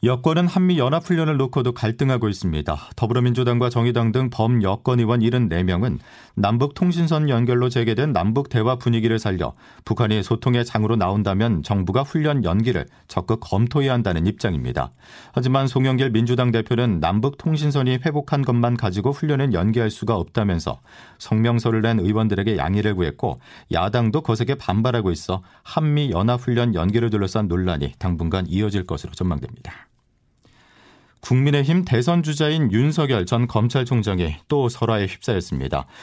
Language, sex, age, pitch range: Korean, male, 40-59, 100-130 Hz